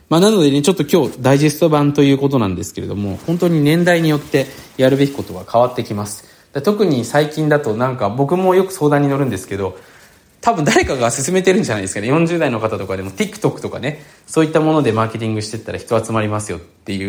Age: 20-39